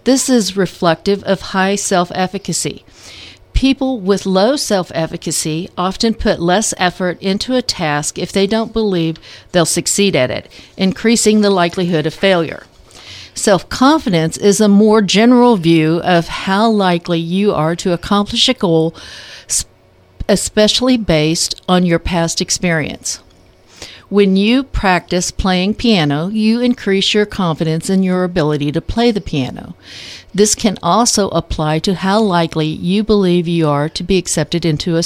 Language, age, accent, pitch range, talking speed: English, 50-69, American, 160-205 Hz, 140 wpm